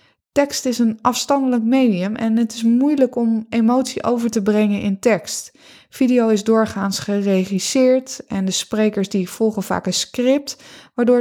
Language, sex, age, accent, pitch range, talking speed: Dutch, female, 20-39, Dutch, 200-240 Hz, 155 wpm